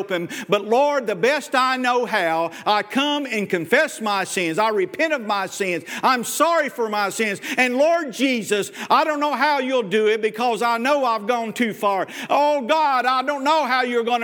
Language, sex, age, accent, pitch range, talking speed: English, male, 50-69, American, 175-270 Hz, 200 wpm